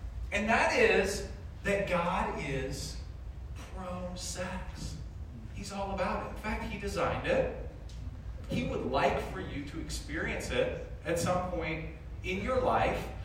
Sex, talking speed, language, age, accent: male, 135 wpm, English, 40-59, American